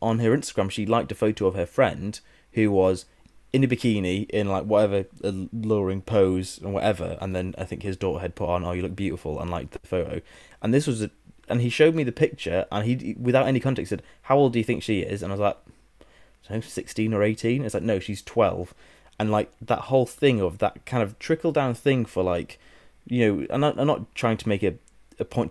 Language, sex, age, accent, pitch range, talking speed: English, male, 20-39, British, 95-120 Hz, 240 wpm